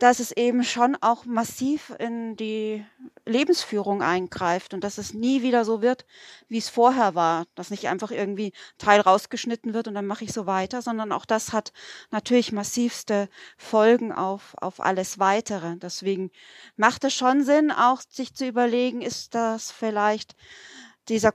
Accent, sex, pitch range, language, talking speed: German, female, 210-255 Hz, German, 165 wpm